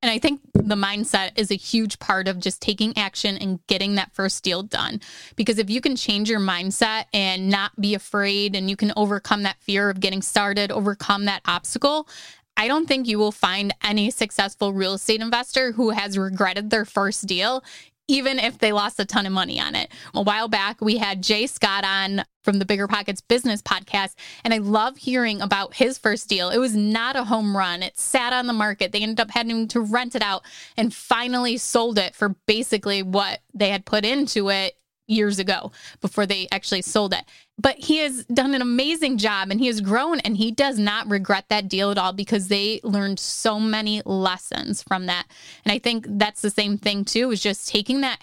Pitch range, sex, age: 200-230 Hz, female, 20-39